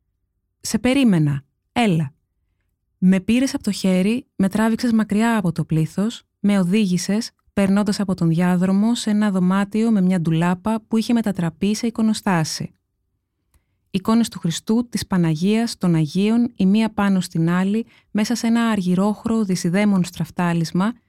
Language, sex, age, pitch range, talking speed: Greek, female, 20-39, 170-220 Hz, 140 wpm